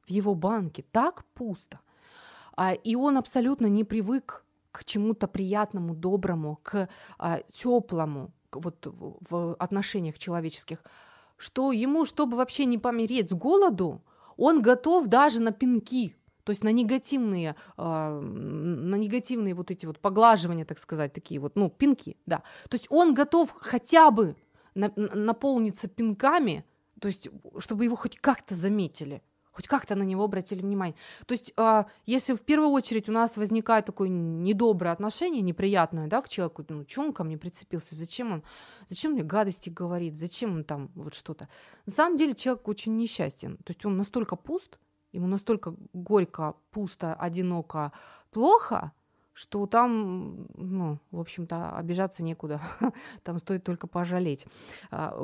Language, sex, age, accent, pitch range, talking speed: Ukrainian, female, 30-49, native, 175-240 Hz, 145 wpm